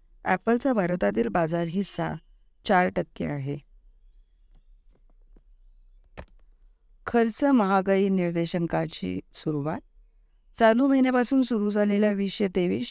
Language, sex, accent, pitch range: Marathi, female, native, 160-220 Hz